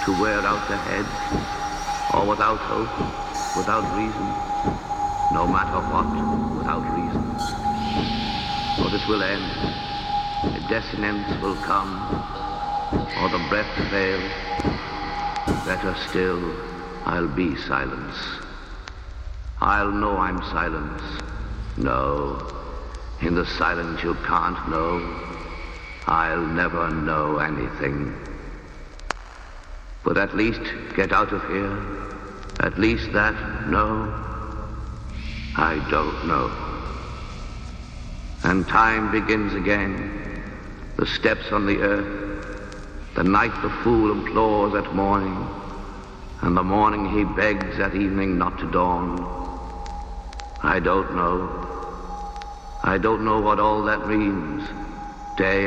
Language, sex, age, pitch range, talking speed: English, male, 70-89, 80-105 Hz, 105 wpm